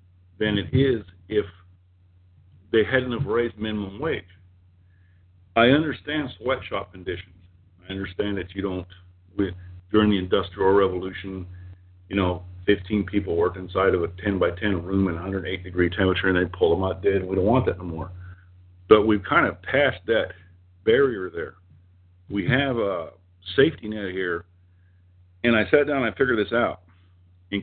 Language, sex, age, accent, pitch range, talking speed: English, male, 50-69, American, 90-105 Hz, 165 wpm